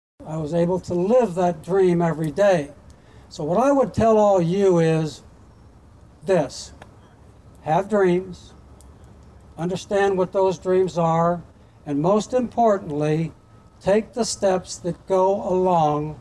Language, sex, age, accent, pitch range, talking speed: English, male, 60-79, American, 155-195 Hz, 125 wpm